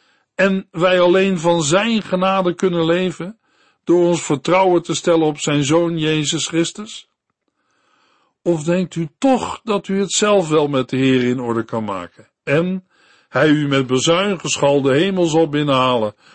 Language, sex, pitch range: Dutch, male, 135-185 Hz